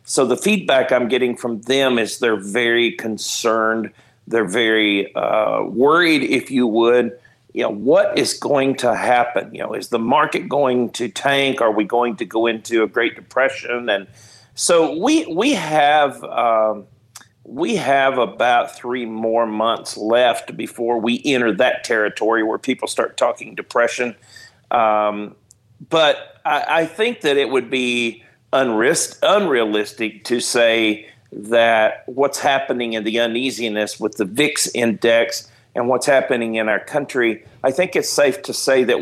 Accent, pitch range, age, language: American, 110-130 Hz, 50-69, English